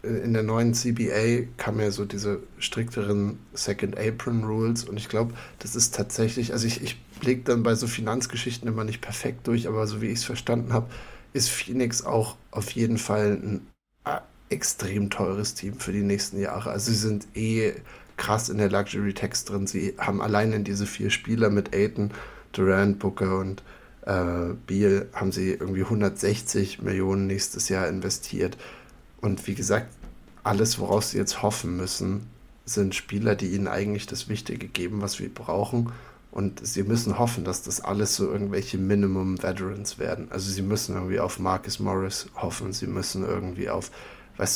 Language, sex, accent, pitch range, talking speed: German, male, German, 100-115 Hz, 170 wpm